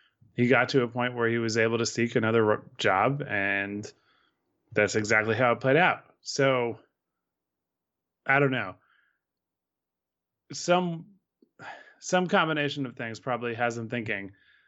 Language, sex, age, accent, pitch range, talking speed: English, male, 20-39, American, 105-130 Hz, 135 wpm